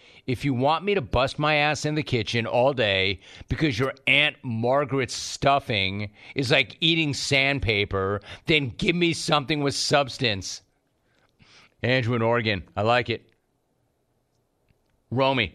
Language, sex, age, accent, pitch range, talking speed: English, male, 40-59, American, 115-150 Hz, 135 wpm